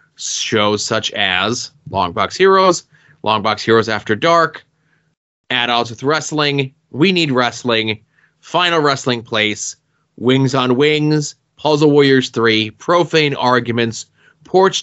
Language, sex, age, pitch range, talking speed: English, male, 20-39, 125-150 Hz, 110 wpm